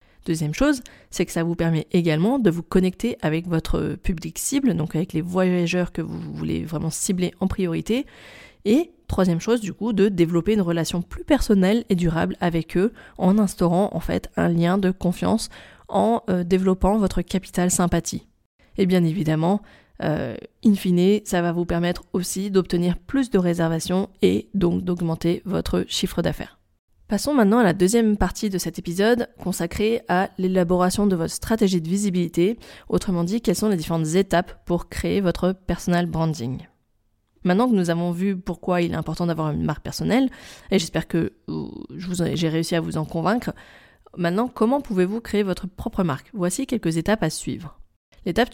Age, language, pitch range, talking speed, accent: 20-39, French, 170-200 Hz, 175 wpm, French